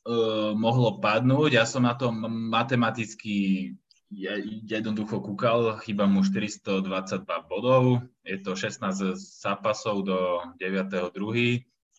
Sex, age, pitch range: male, 20-39, 95-115 Hz